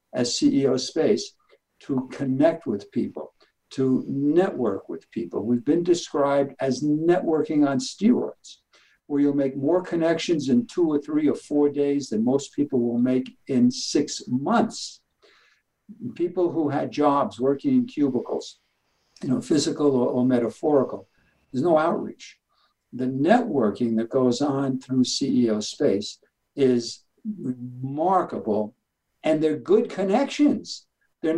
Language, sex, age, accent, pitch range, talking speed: English, male, 60-79, American, 130-205 Hz, 130 wpm